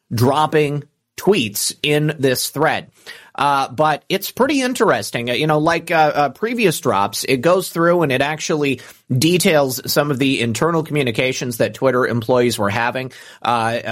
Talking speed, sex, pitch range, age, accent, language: 150 wpm, male, 120-155 Hz, 30-49, American, English